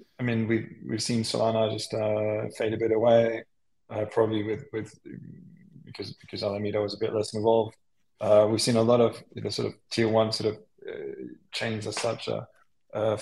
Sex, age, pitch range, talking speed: male, 20-39, 105-115 Hz, 200 wpm